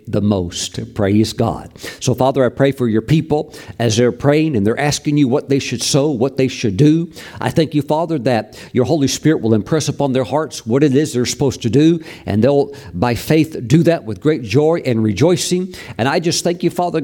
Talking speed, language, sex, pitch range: 220 wpm, English, male, 120-155 Hz